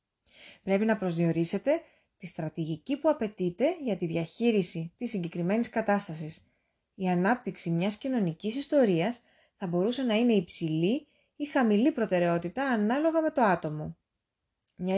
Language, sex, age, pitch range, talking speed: Greek, female, 20-39, 175-245 Hz, 125 wpm